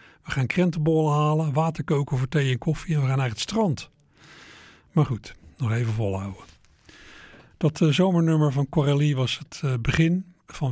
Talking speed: 175 wpm